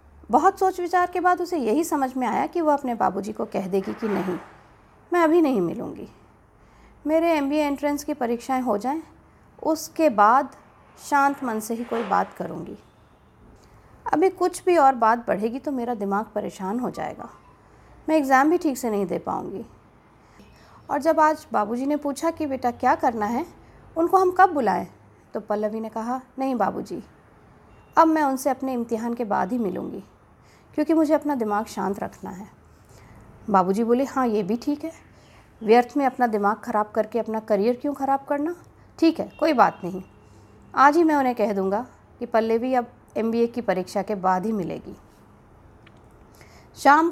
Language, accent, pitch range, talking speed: Hindi, native, 210-305 Hz, 175 wpm